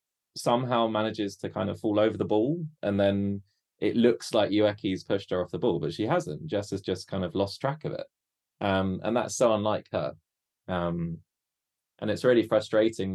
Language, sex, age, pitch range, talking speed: English, male, 20-39, 90-110 Hz, 195 wpm